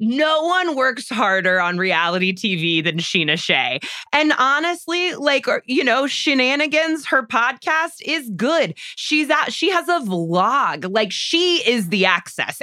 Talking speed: 145 wpm